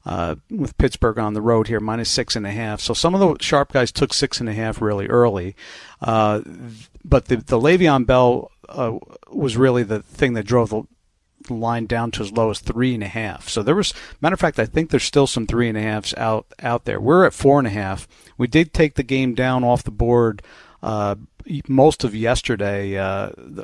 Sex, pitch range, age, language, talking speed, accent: male, 110-135 Hz, 50-69, English, 190 wpm, American